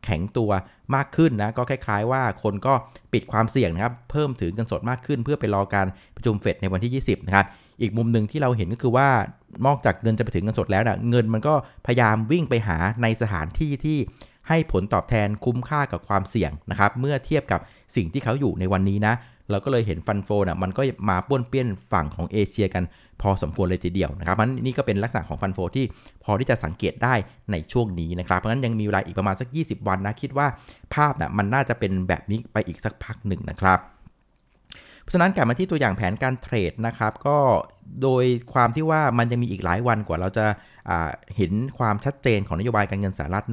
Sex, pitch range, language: male, 95-125 Hz, Thai